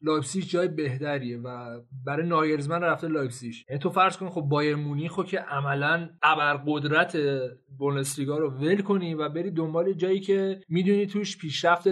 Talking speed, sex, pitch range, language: 150 wpm, male, 155-195 Hz, Persian